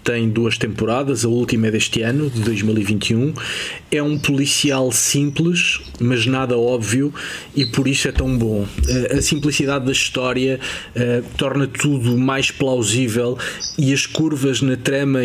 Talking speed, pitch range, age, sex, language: 145 wpm, 115-135 Hz, 20-39, male, Portuguese